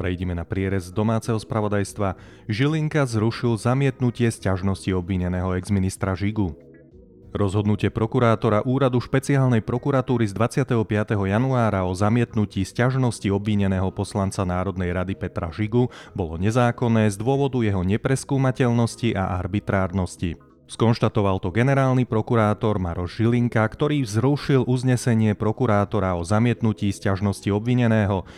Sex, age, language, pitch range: male, 30-49, Slovak, 95-120 Hz